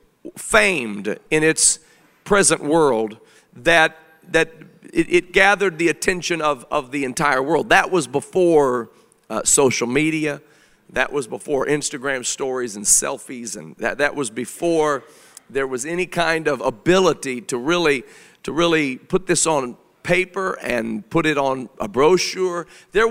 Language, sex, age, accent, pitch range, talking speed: English, male, 50-69, American, 135-185 Hz, 145 wpm